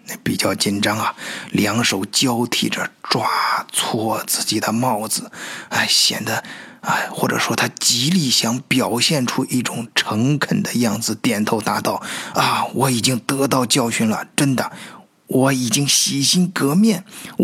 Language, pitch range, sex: Chinese, 110-150 Hz, male